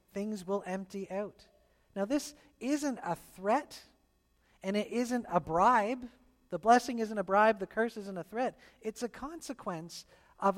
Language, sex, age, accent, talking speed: English, male, 40-59, American, 160 wpm